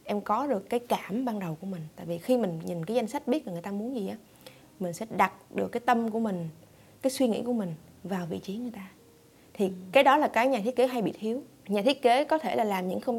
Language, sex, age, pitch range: Vietnamese, female, 20-39, 180-255 Hz